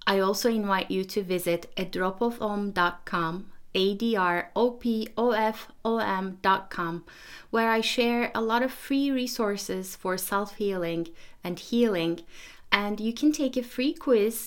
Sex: female